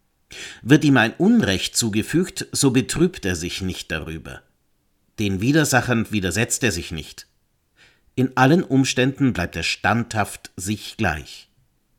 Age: 50-69